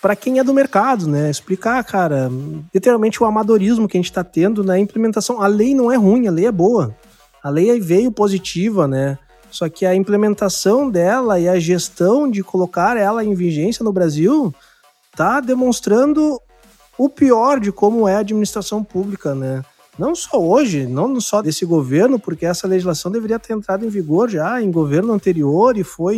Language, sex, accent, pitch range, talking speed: Portuguese, male, Brazilian, 170-235 Hz, 180 wpm